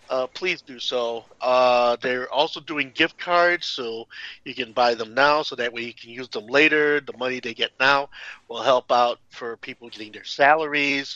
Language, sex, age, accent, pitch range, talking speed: English, male, 50-69, American, 115-140 Hz, 200 wpm